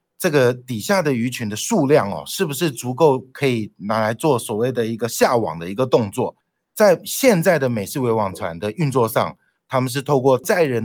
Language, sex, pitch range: Chinese, male, 115-140 Hz